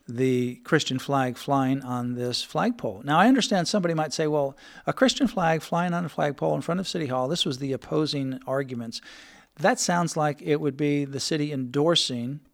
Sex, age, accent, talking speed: male, 50-69, American, 190 wpm